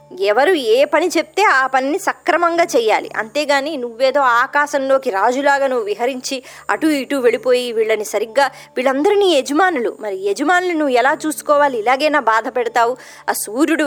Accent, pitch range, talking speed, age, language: native, 245-340 Hz, 135 wpm, 20-39, Telugu